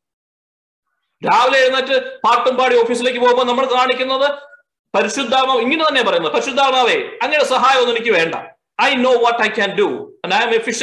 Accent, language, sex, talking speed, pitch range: native, Malayalam, male, 145 wpm, 210-290 Hz